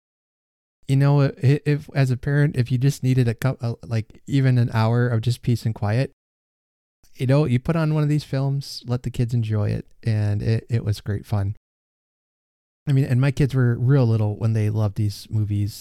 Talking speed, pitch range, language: 215 wpm, 105-130 Hz, English